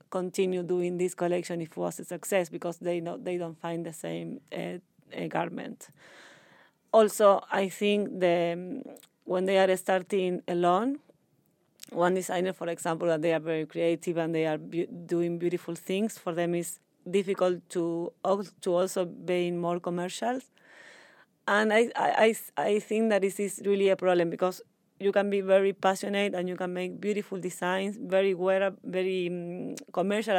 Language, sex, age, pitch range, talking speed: English, female, 30-49, 175-195 Hz, 160 wpm